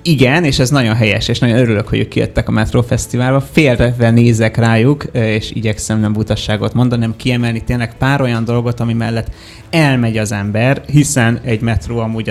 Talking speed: 180 wpm